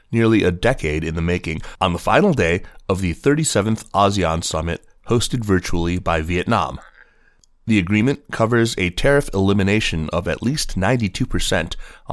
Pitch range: 90-105 Hz